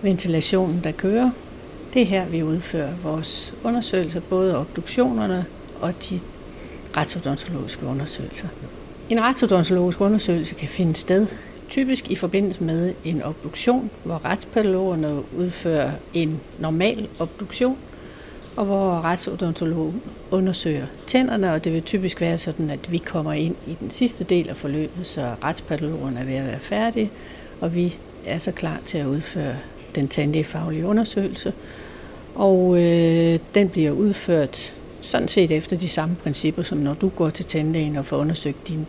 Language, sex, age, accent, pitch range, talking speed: Danish, female, 60-79, native, 155-190 Hz, 145 wpm